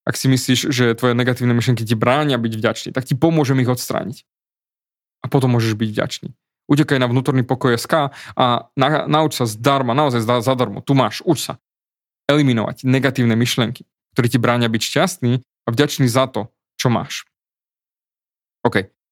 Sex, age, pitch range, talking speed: male, 20-39, 120-145 Hz, 165 wpm